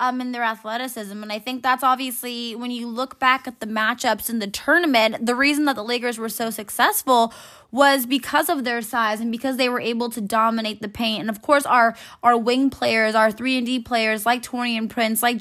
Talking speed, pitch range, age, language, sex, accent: 220 wpm, 230-270 Hz, 10-29, English, female, American